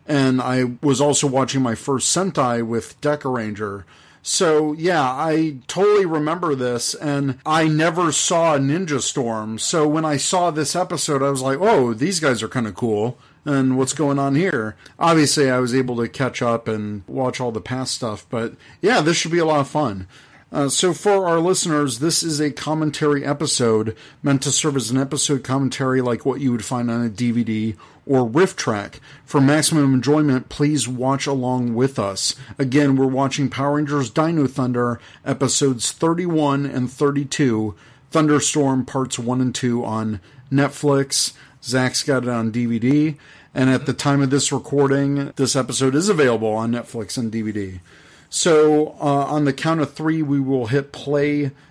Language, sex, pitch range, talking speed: English, male, 125-150 Hz, 175 wpm